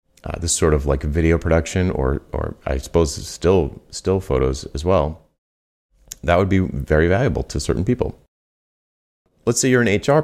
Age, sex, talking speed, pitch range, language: 30-49, male, 170 wpm, 75-85 Hz, English